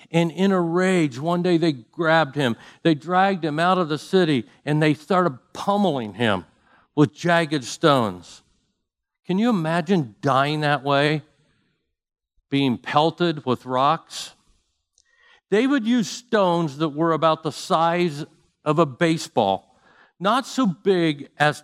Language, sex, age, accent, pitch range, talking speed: English, male, 50-69, American, 135-185 Hz, 140 wpm